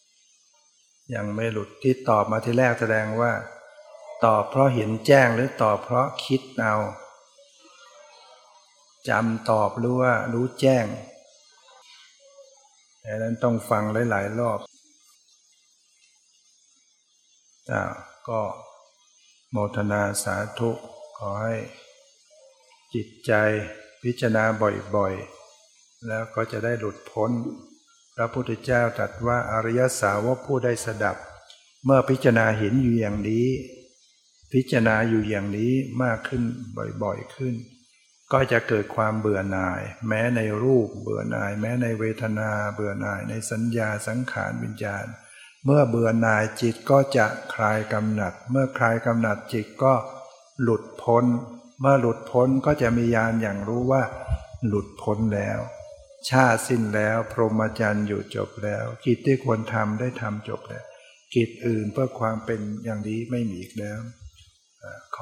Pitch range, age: 105-130 Hz, 60-79